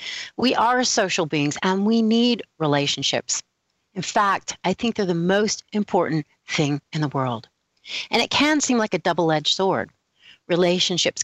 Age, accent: 40-59, American